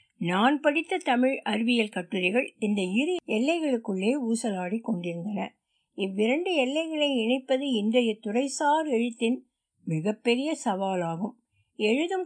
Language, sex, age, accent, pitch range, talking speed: Tamil, female, 60-79, native, 215-295 Hz, 95 wpm